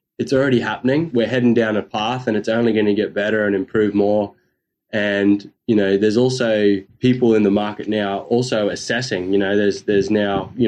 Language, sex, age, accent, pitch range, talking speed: English, male, 20-39, Australian, 100-115 Hz, 200 wpm